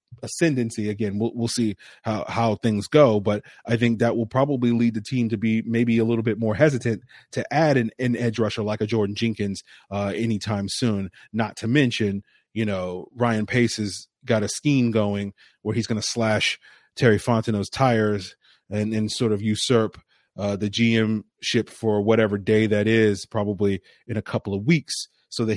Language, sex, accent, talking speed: English, male, American, 190 wpm